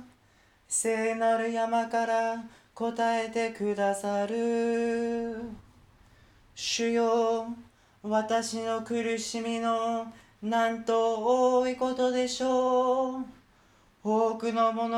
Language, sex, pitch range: Japanese, male, 225-230 Hz